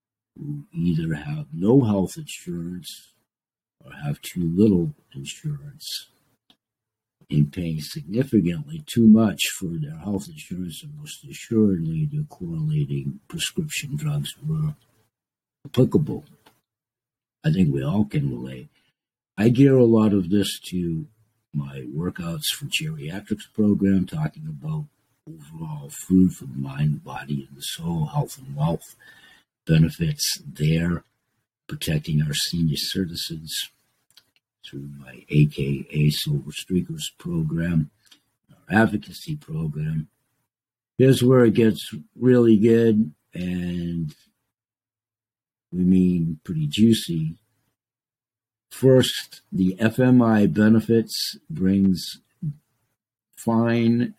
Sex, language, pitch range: male, Chinese, 95-150 Hz